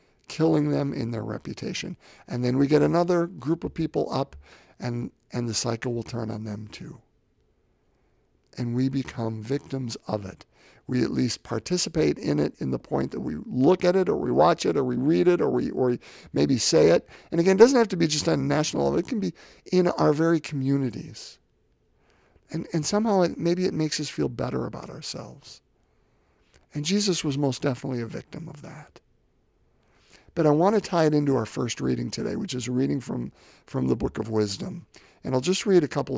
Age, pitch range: 50-69, 120-165 Hz